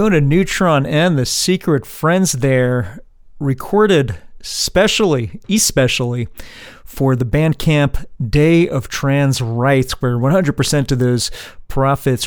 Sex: male